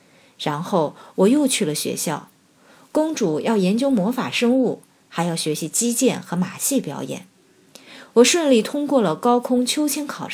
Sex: female